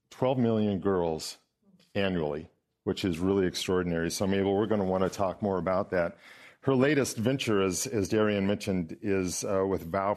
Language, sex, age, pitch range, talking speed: English, male, 50-69, 90-110 Hz, 175 wpm